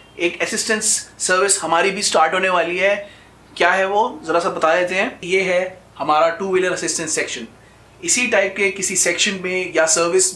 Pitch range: 160-190 Hz